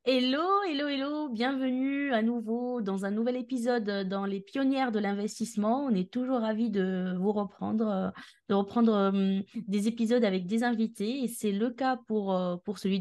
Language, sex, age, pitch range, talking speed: French, female, 20-39, 185-235 Hz, 165 wpm